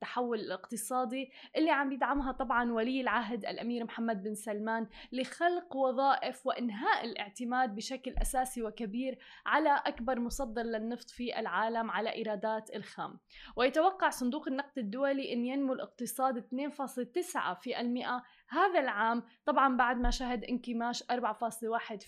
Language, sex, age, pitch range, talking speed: Arabic, female, 10-29, 230-275 Hz, 125 wpm